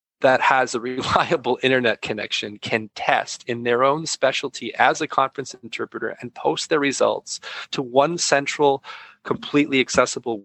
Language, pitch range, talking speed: English, 115-140 Hz, 145 wpm